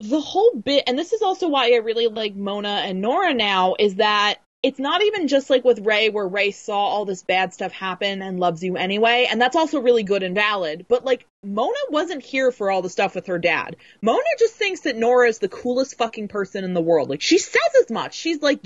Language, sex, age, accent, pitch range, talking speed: English, female, 20-39, American, 195-280 Hz, 240 wpm